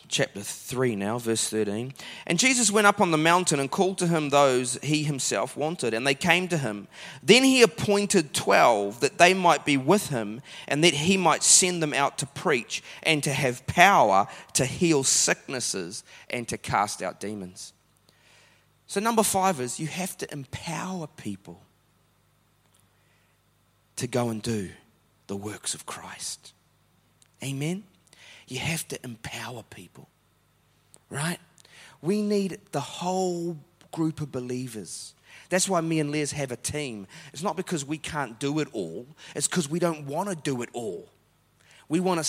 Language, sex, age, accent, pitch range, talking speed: English, male, 30-49, Australian, 130-180 Hz, 160 wpm